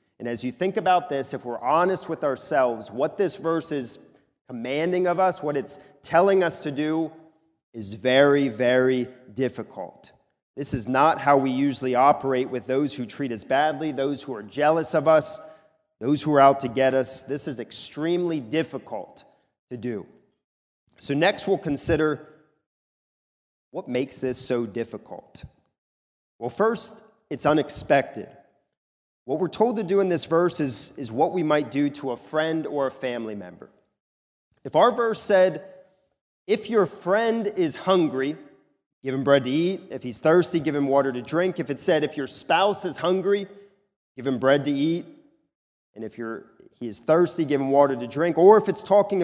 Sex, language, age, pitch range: male, English, 30-49, 130-180 Hz